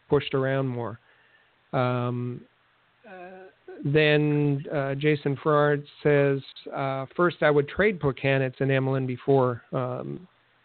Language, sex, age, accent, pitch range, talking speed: English, male, 50-69, American, 130-150 Hz, 115 wpm